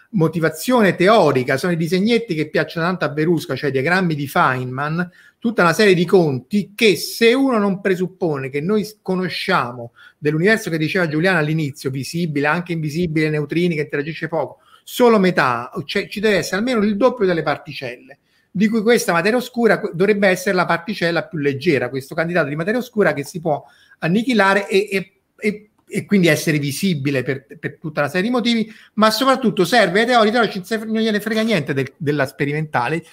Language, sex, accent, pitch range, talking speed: Italian, male, native, 150-210 Hz, 175 wpm